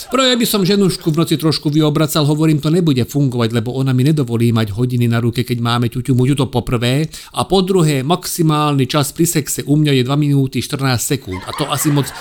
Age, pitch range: 50-69, 120-175 Hz